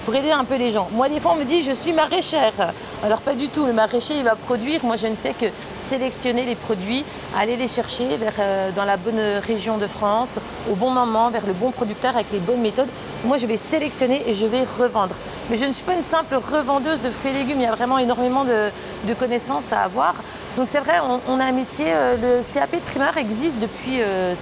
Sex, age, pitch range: female, 40-59, 220-260 Hz